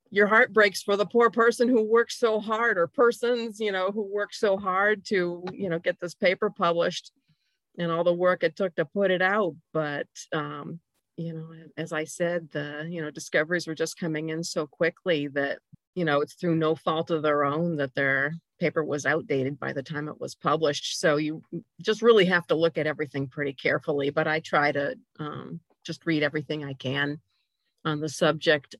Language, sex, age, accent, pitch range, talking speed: English, female, 40-59, American, 150-180 Hz, 205 wpm